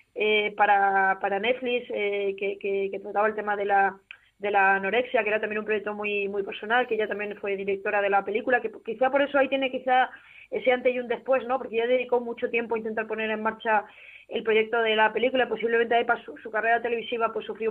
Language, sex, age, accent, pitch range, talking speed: Spanish, female, 20-39, Spanish, 210-245 Hz, 230 wpm